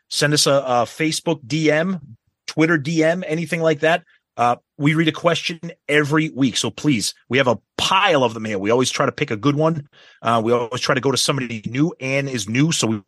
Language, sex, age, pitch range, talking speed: English, male, 30-49, 115-155 Hz, 225 wpm